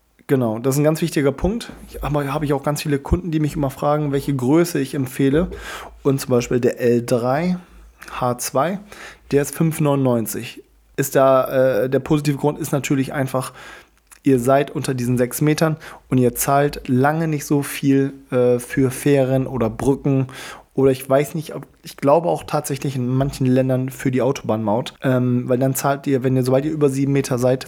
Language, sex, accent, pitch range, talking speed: German, male, German, 130-145 Hz, 190 wpm